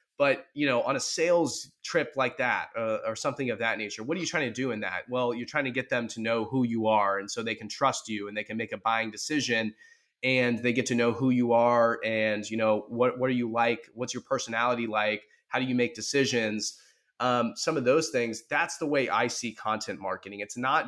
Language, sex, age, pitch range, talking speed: English, male, 20-39, 110-135 Hz, 245 wpm